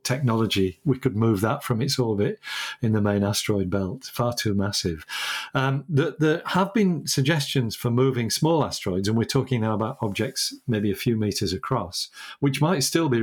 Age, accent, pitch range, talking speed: 50-69, British, 105-140 Hz, 185 wpm